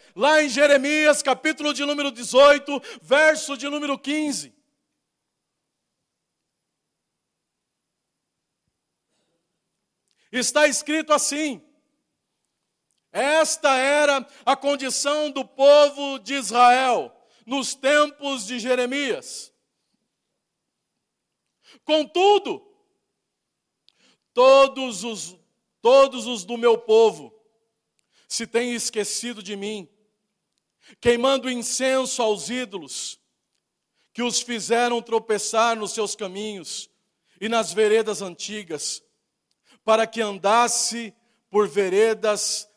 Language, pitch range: Portuguese, 225-295 Hz